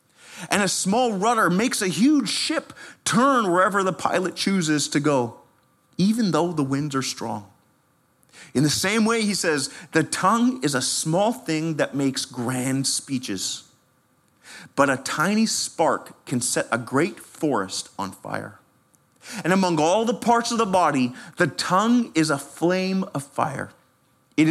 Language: English